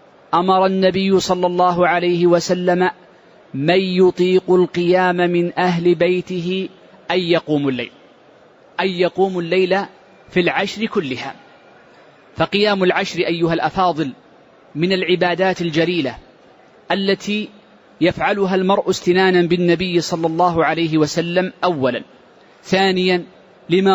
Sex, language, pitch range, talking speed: male, Arabic, 170-190 Hz, 100 wpm